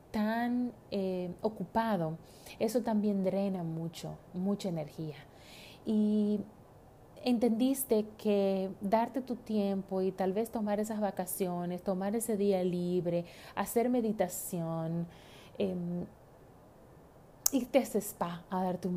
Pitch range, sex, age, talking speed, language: 170-215 Hz, female, 30-49, 110 wpm, Spanish